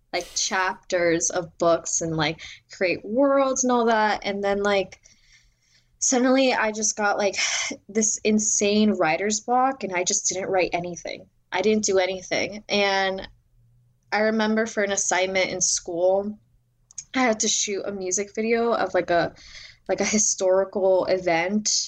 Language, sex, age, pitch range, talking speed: English, female, 10-29, 175-225 Hz, 150 wpm